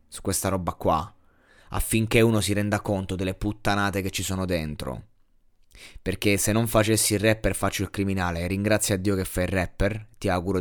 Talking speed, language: 185 wpm, Italian